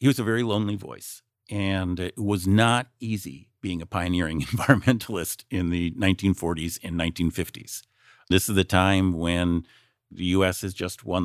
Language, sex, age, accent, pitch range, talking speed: English, male, 50-69, American, 85-110 Hz, 160 wpm